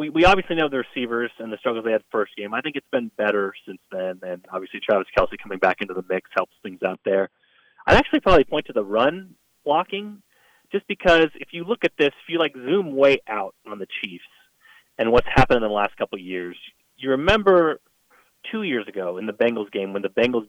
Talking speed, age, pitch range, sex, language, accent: 230 wpm, 30-49, 105-160 Hz, male, English, American